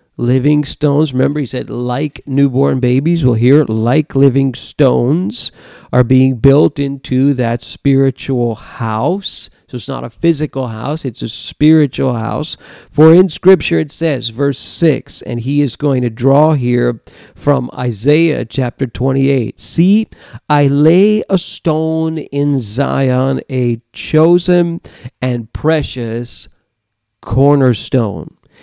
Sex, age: male, 50-69